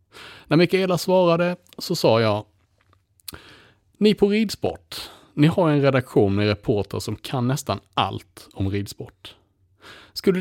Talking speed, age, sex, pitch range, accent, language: 125 wpm, 30-49, male, 100-145 Hz, Norwegian, Swedish